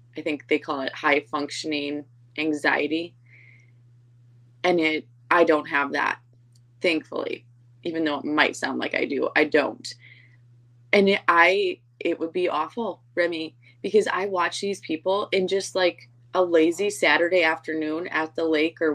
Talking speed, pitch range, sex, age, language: 155 wpm, 120-165 Hz, female, 20-39, English